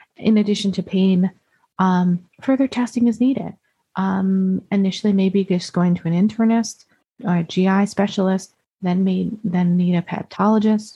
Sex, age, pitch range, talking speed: female, 30-49, 175-210 Hz, 150 wpm